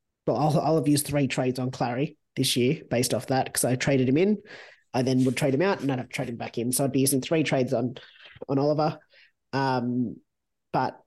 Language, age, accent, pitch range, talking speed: English, 30-49, Australian, 125-150 Hz, 235 wpm